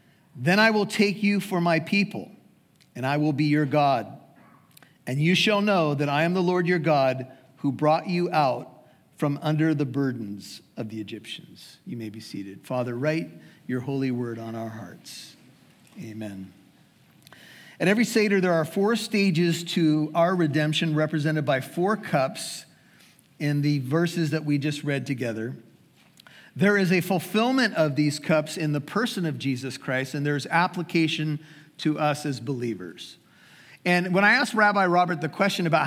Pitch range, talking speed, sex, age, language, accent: 145-185 Hz, 165 wpm, male, 50-69, English, American